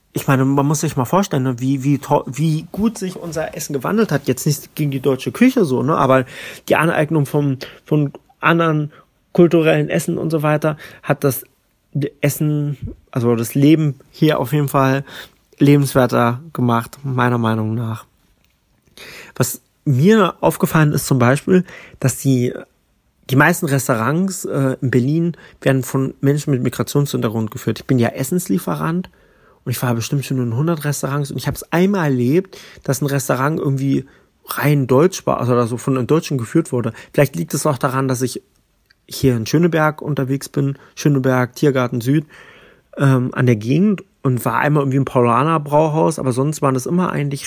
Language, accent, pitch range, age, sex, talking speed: German, German, 130-155 Hz, 30-49, male, 165 wpm